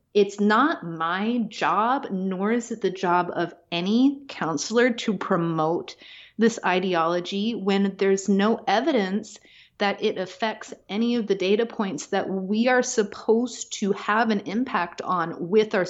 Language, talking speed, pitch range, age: English, 145 wpm, 180-225 Hz, 30-49